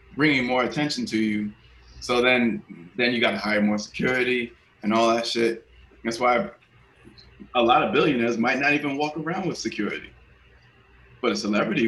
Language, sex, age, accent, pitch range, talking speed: English, male, 20-39, American, 100-115 Hz, 170 wpm